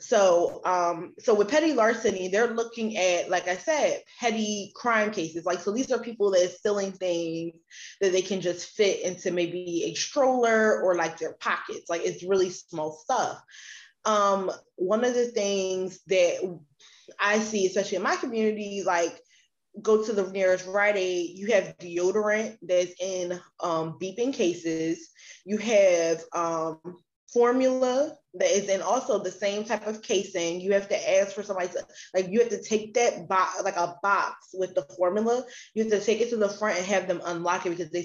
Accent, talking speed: American, 185 wpm